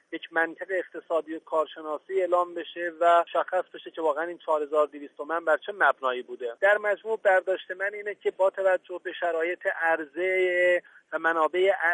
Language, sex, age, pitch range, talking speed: English, male, 40-59, 155-180 Hz, 160 wpm